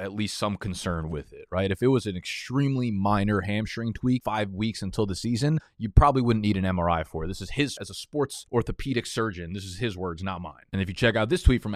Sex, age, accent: male, 20-39, American